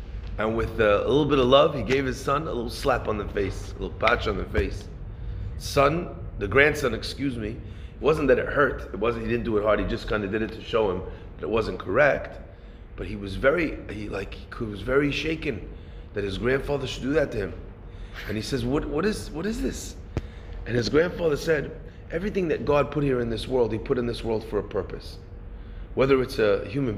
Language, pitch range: English, 100-165 Hz